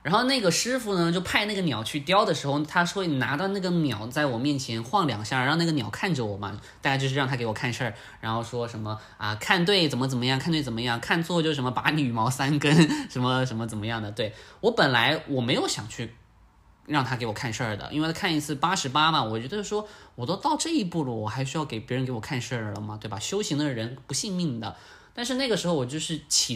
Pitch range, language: 120-165 Hz, Chinese